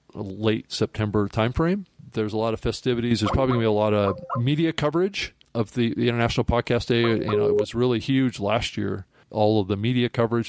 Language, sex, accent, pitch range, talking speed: English, male, American, 105-125 Hz, 215 wpm